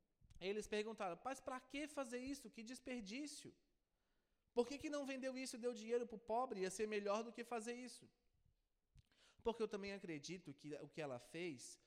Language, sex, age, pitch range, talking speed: Portuguese, male, 20-39, 155-225 Hz, 185 wpm